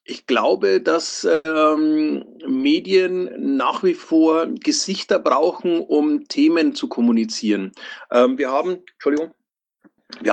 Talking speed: 110 wpm